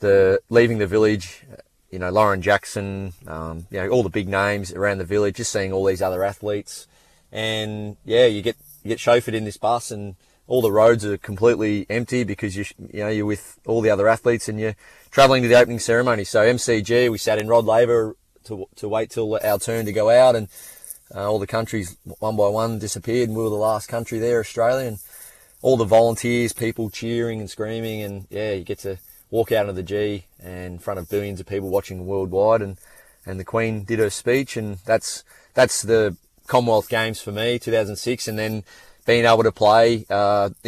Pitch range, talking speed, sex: 100-115 Hz, 210 wpm, male